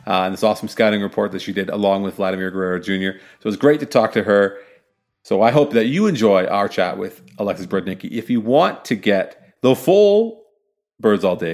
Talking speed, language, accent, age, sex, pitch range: 225 wpm, English, American, 40-59, male, 95-115 Hz